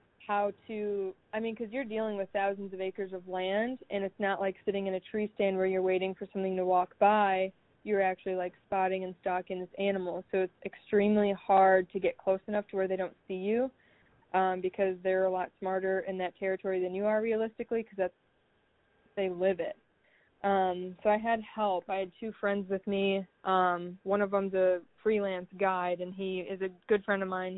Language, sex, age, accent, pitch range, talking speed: English, female, 20-39, American, 185-210 Hz, 210 wpm